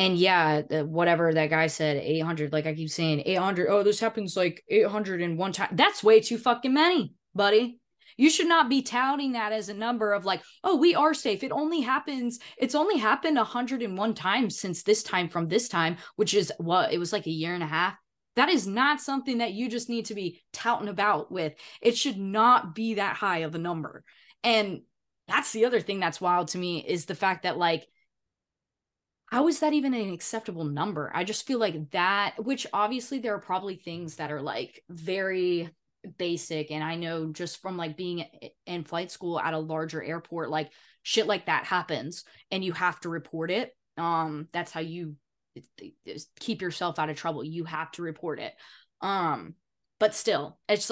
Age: 20-39